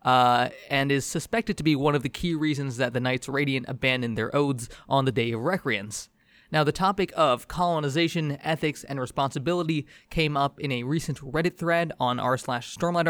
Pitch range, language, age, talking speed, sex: 135-175 Hz, English, 20-39, 195 wpm, male